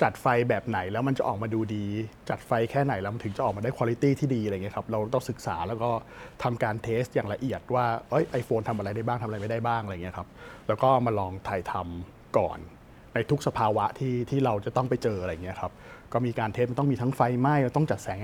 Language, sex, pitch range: Thai, male, 105-130 Hz